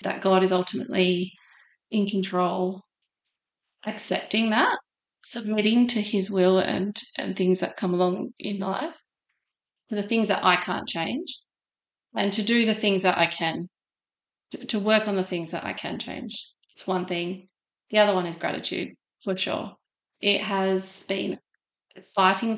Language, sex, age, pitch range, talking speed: English, female, 30-49, 185-205 Hz, 155 wpm